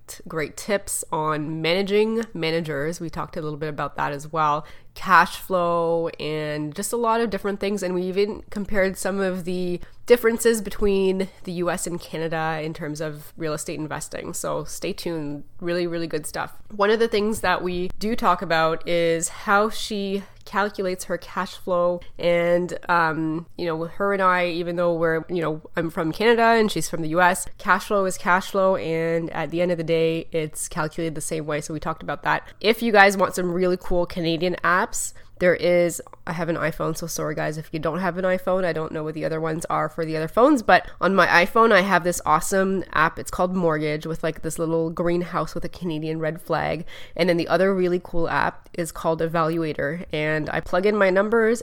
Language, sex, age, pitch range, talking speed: English, female, 20-39, 160-190 Hz, 215 wpm